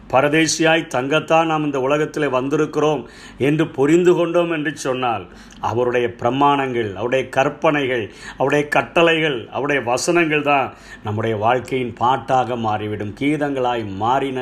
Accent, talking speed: native, 100 wpm